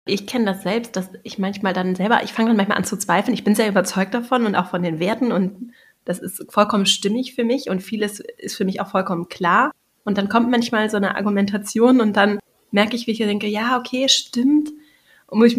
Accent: German